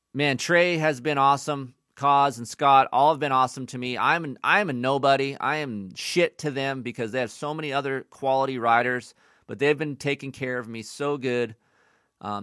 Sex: male